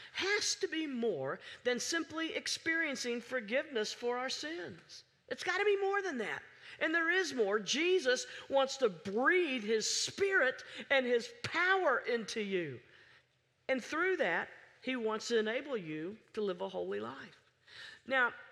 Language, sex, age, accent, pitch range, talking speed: English, female, 50-69, American, 215-325 Hz, 150 wpm